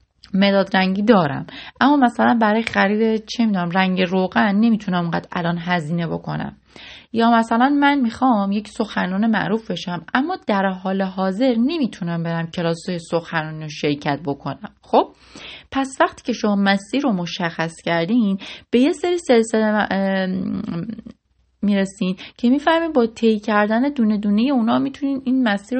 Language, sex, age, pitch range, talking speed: Persian, female, 30-49, 180-235 Hz, 140 wpm